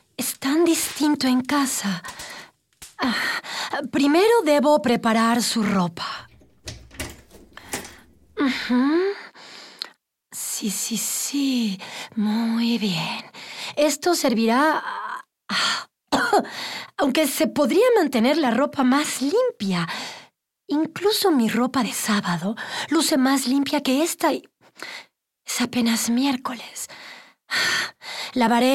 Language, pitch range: Spanish, 230-310 Hz